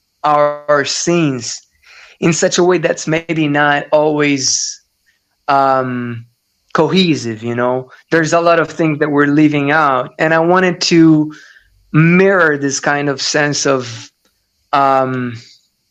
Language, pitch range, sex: Italian, 130-165 Hz, male